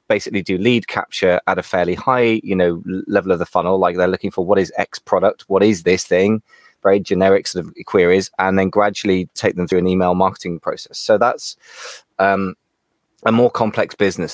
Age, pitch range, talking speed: 20-39, 90-115 Hz, 200 wpm